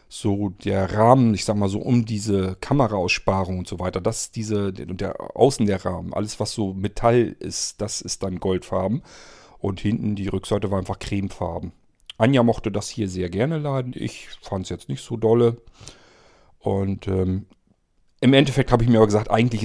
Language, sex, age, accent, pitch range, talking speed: German, male, 40-59, German, 95-115 Hz, 190 wpm